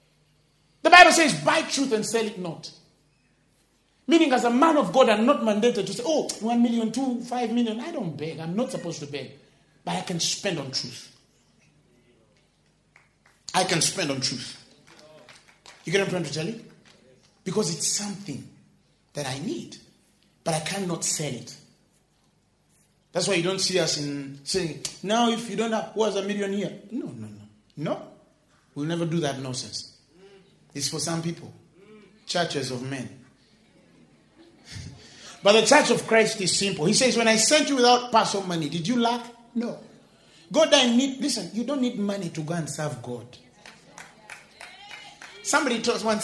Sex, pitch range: male, 160-235 Hz